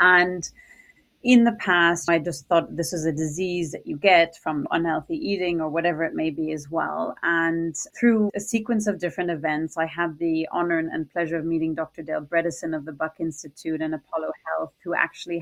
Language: English